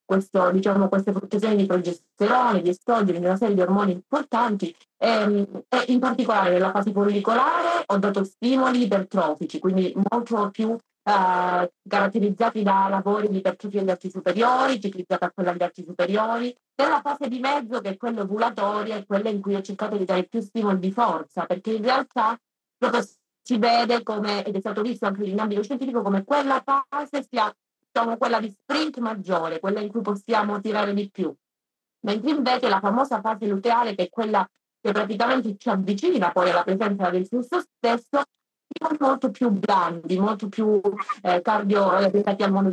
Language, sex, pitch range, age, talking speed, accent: Italian, female, 190-235 Hz, 30-49, 170 wpm, native